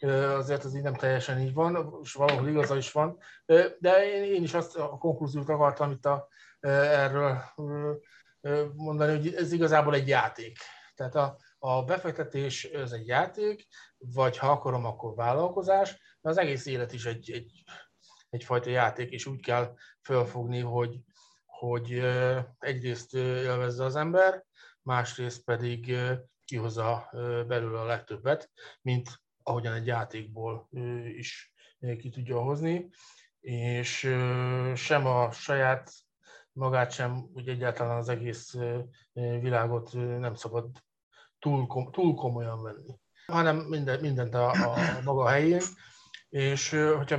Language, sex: Hungarian, male